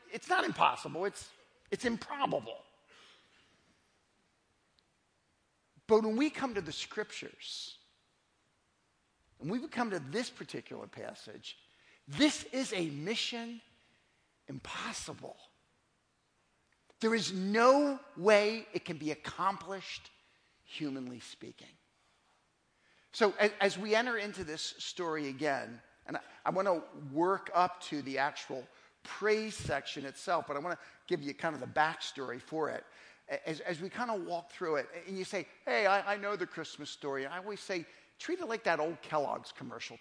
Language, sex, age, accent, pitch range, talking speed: English, male, 50-69, American, 150-220 Hz, 140 wpm